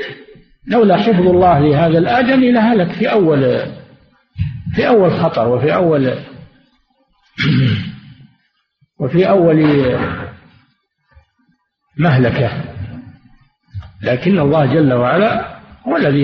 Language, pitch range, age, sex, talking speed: Arabic, 130-195 Hz, 50-69, male, 80 wpm